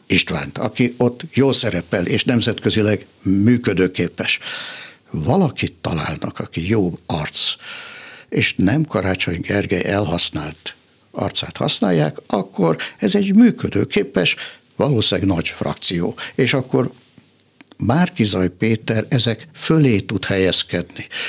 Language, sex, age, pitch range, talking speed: Hungarian, male, 60-79, 95-125 Hz, 100 wpm